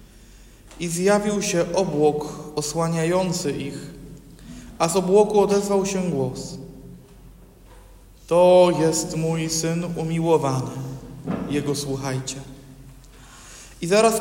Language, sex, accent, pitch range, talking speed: Polish, male, native, 155-195 Hz, 90 wpm